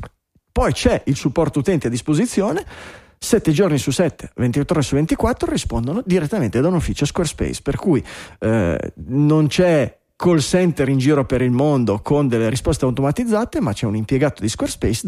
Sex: male